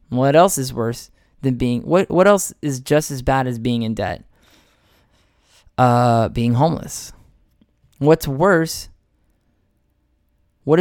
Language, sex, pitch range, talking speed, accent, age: English, male, 115-155 Hz, 130 wpm, American, 10-29